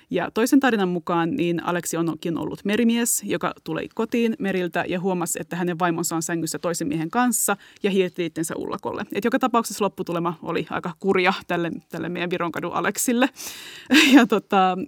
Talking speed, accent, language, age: 165 wpm, native, Finnish, 20-39